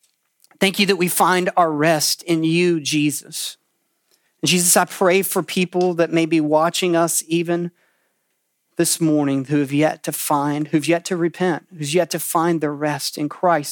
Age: 40-59